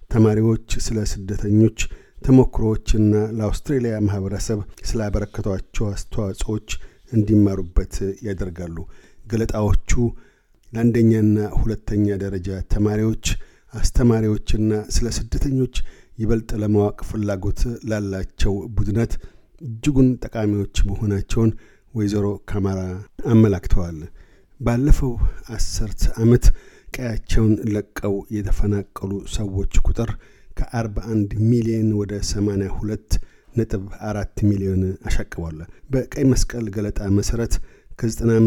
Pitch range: 100-115 Hz